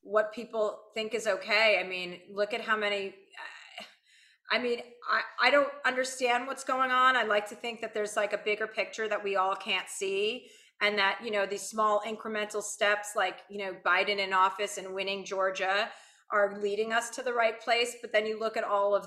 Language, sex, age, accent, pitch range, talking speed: English, female, 30-49, American, 210-280 Hz, 210 wpm